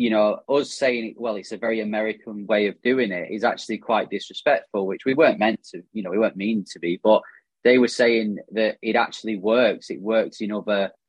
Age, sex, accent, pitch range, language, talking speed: 20-39, male, British, 100-120 Hz, English, 225 wpm